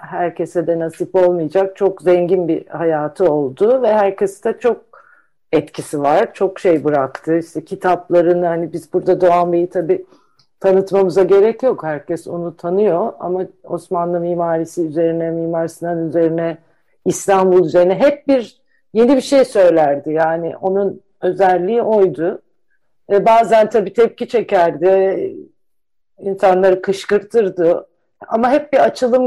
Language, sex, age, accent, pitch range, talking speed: Turkish, female, 50-69, native, 170-210 Hz, 120 wpm